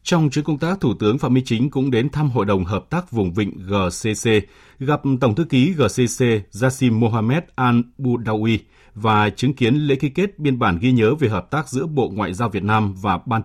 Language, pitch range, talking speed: Vietnamese, 105-140 Hz, 220 wpm